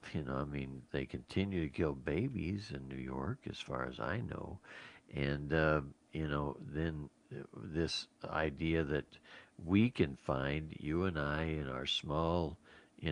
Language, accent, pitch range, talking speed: English, American, 70-90 Hz, 160 wpm